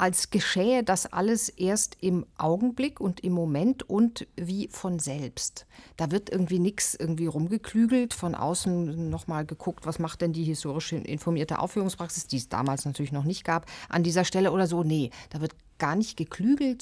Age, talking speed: 50-69, 175 wpm